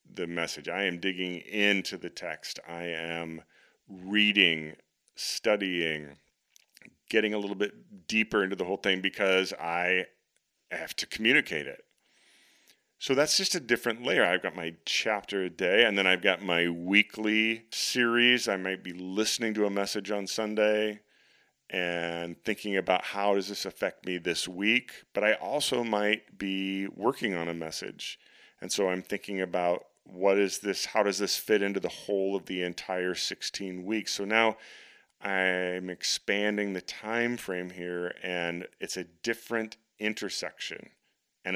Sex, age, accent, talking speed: male, 40-59, American, 155 wpm